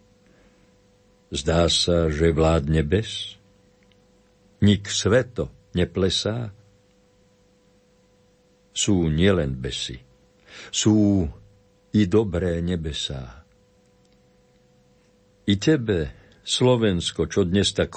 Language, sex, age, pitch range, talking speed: Slovak, male, 60-79, 90-105 Hz, 70 wpm